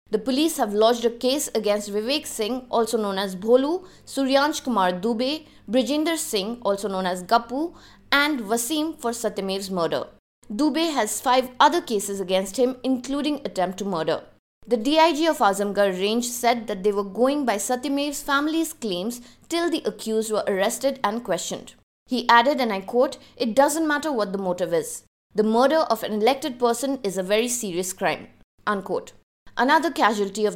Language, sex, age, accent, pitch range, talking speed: English, female, 20-39, Indian, 205-275 Hz, 170 wpm